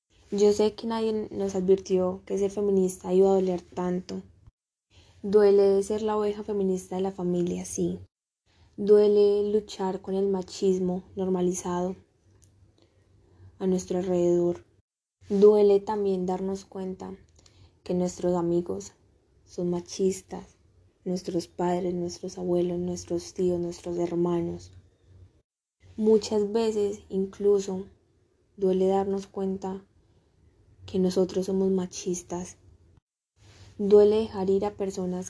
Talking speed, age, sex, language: 105 wpm, 10-29, female, Spanish